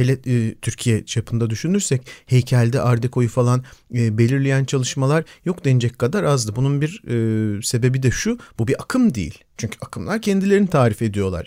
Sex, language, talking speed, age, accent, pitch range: male, Turkish, 135 wpm, 50-69, native, 120-150 Hz